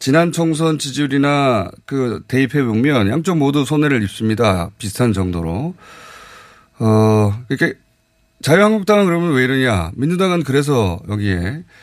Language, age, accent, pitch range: Korean, 30-49, native, 115-165 Hz